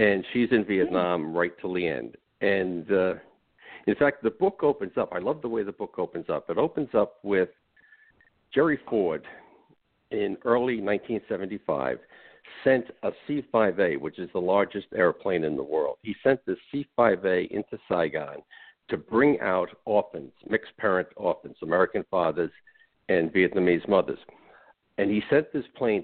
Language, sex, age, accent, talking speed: English, male, 60-79, American, 155 wpm